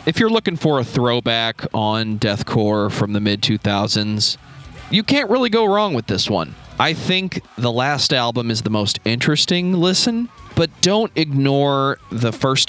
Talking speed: 160 wpm